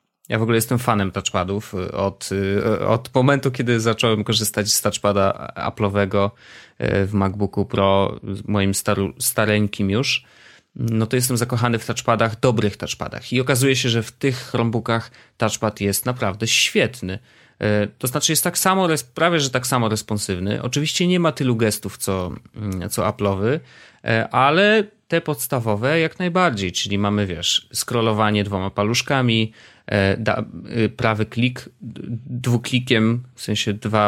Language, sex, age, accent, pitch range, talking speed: Polish, male, 30-49, native, 100-125 Hz, 135 wpm